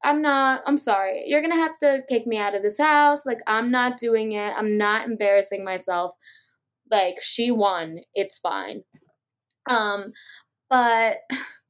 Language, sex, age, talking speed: English, female, 20-39, 160 wpm